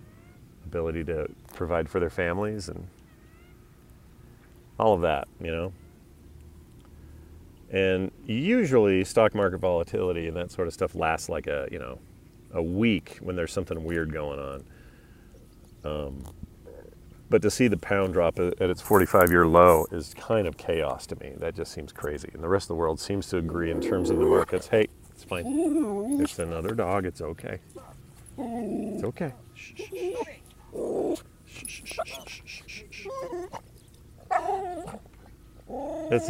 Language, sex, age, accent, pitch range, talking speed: English, male, 40-59, American, 85-120 Hz, 140 wpm